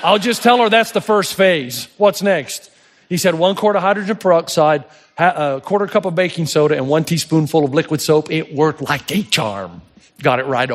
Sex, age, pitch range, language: male, 40-59, 140-185 Hz, English